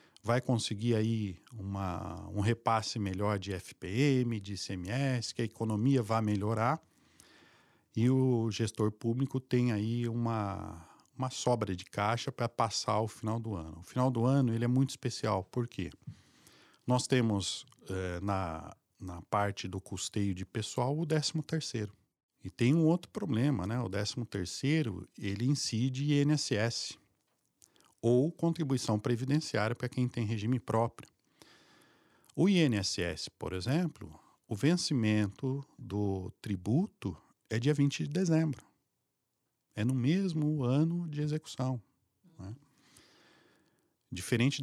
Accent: Brazilian